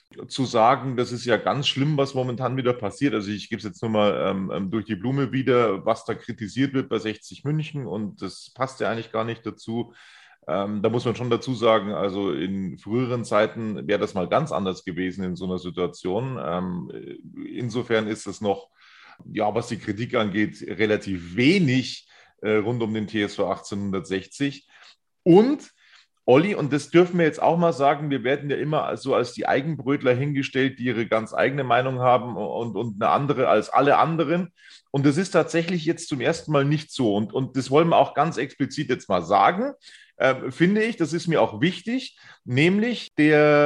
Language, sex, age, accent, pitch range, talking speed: German, male, 30-49, German, 110-155 Hz, 190 wpm